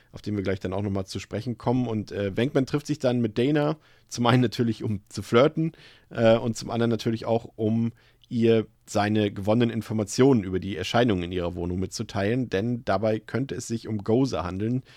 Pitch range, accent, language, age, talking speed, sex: 105-125 Hz, German, German, 40-59, 200 wpm, male